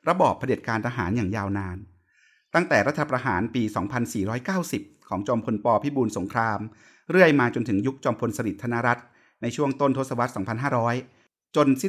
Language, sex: Thai, male